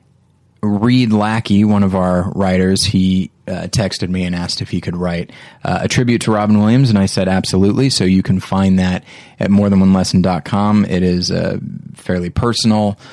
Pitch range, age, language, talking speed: 90-105 Hz, 20-39, English, 175 wpm